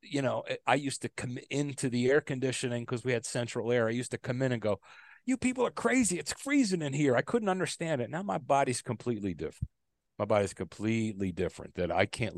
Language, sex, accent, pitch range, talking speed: English, male, American, 105-145 Hz, 225 wpm